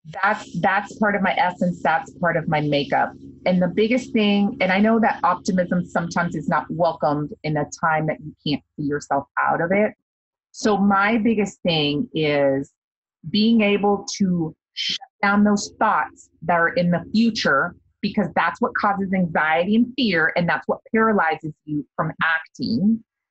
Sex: female